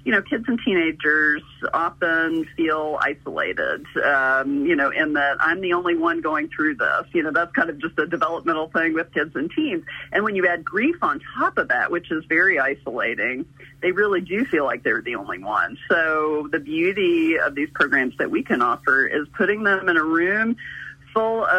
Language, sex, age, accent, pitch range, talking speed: English, female, 40-59, American, 160-220 Hz, 200 wpm